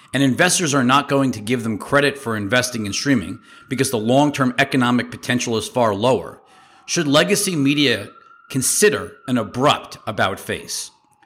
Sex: male